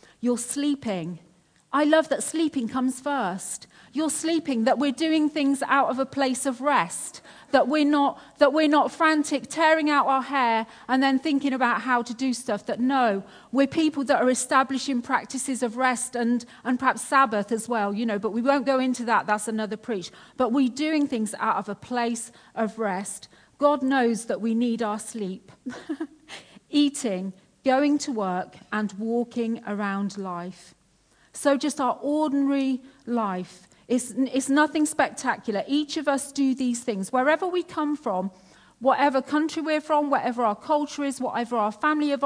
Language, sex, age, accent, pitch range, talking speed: English, female, 40-59, British, 215-280 Hz, 175 wpm